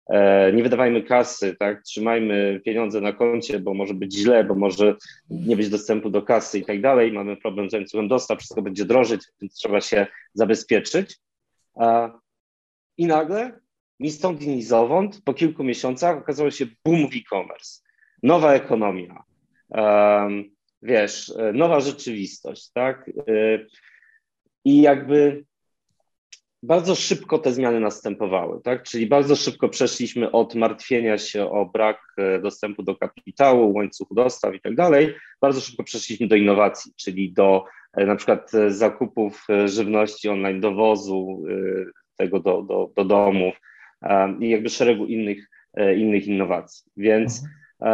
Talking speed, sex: 135 wpm, male